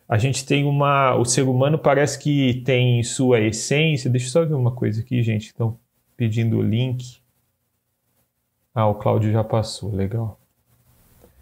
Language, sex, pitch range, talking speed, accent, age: Portuguese, male, 120-155 Hz, 160 wpm, Brazilian, 30-49